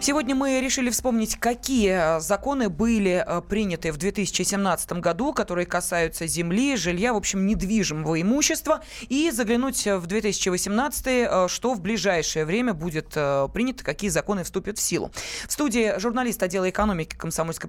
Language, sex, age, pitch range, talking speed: Russian, female, 20-39, 175-235 Hz, 135 wpm